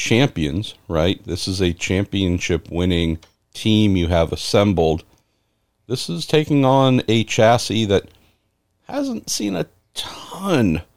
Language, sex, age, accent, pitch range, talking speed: English, male, 50-69, American, 90-110 Hz, 120 wpm